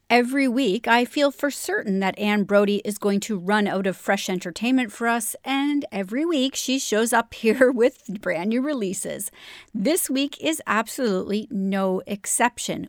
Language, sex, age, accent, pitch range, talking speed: English, female, 40-59, American, 210-290 Hz, 170 wpm